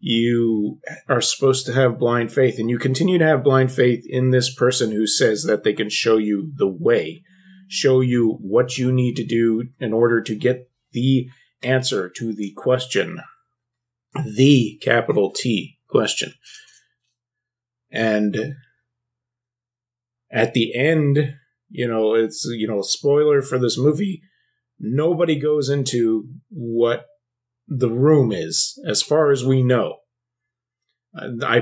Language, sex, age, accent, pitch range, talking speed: English, male, 30-49, American, 115-135 Hz, 135 wpm